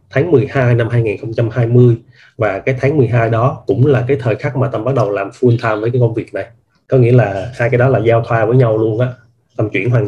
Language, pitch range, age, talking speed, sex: Vietnamese, 115-130 Hz, 20-39, 250 wpm, male